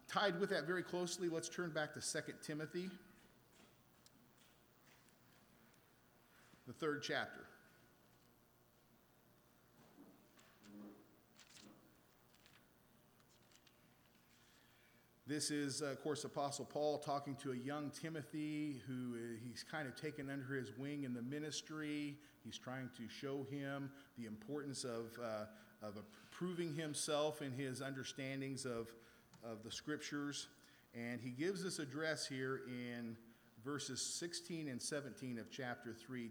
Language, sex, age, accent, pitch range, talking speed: English, male, 40-59, American, 120-155 Hz, 115 wpm